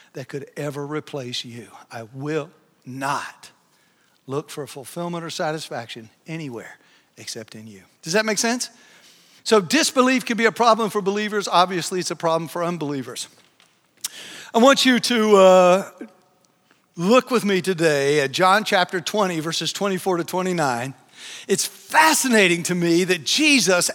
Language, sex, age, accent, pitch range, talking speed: English, male, 60-79, American, 175-260 Hz, 145 wpm